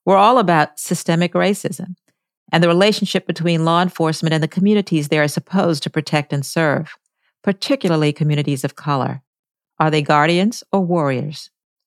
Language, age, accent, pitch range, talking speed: English, 50-69, American, 150-185 Hz, 150 wpm